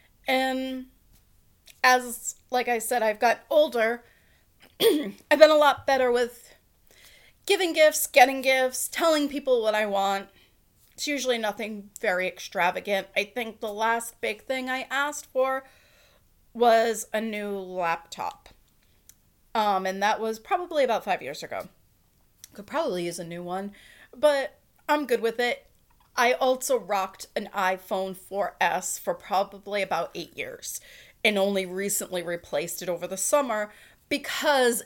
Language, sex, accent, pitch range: English, female, American, 190-255 Hz